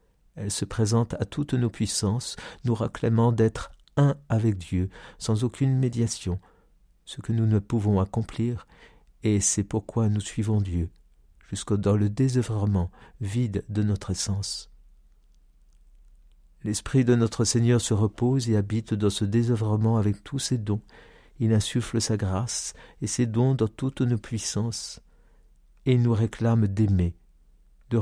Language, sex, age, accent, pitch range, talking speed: French, male, 50-69, French, 100-115 Hz, 145 wpm